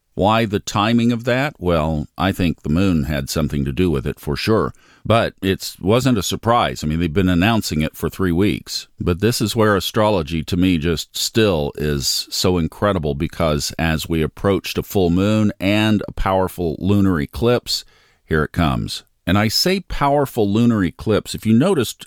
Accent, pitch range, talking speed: American, 85-110 Hz, 185 wpm